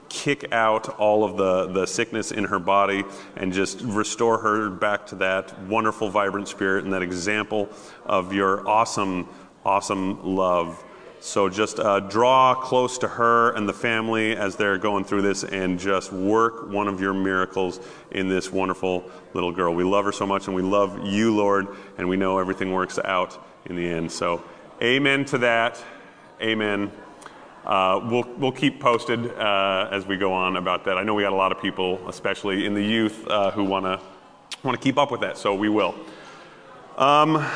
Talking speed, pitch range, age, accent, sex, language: 185 wpm, 95-130 Hz, 30-49, American, male, English